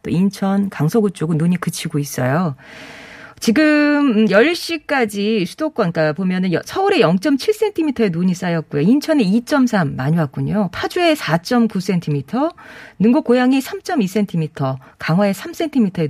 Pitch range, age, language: 165-240 Hz, 40-59, Korean